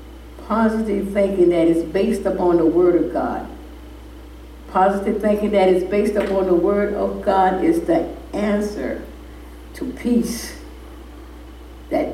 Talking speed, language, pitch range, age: 130 wpm, English, 155-230 Hz, 60-79